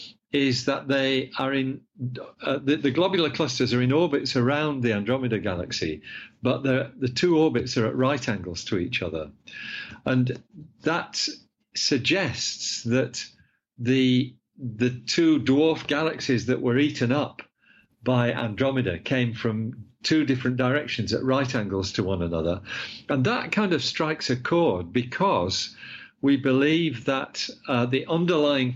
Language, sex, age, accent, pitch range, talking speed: English, male, 50-69, British, 115-140 Hz, 145 wpm